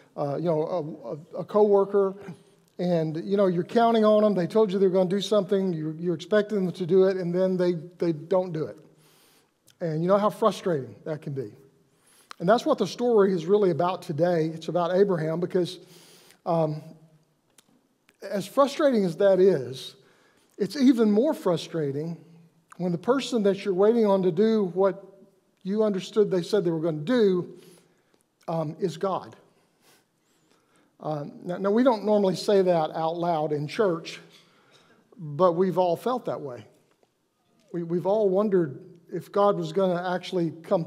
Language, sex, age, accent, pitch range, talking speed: English, male, 50-69, American, 170-205 Hz, 170 wpm